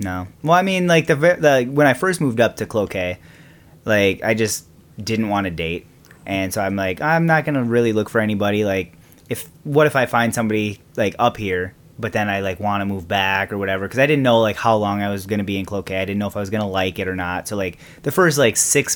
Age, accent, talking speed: 20-39, American, 260 wpm